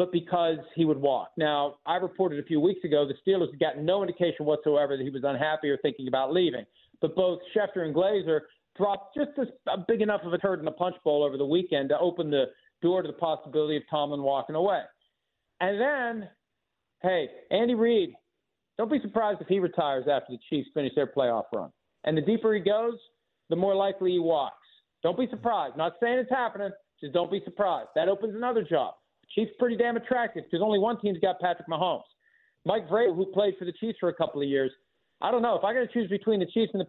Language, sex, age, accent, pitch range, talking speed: English, male, 50-69, American, 160-225 Hz, 225 wpm